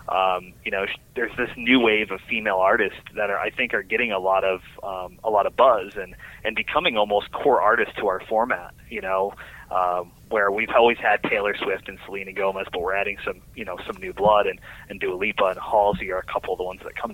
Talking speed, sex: 240 wpm, male